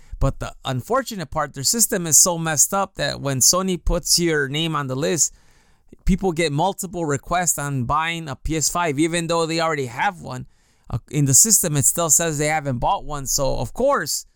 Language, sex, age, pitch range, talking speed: English, male, 20-39, 130-170 Hz, 190 wpm